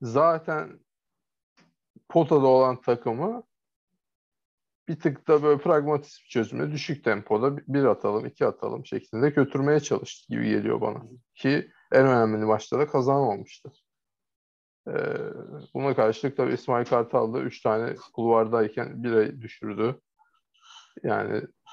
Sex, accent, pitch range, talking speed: male, native, 115-150 Hz, 120 wpm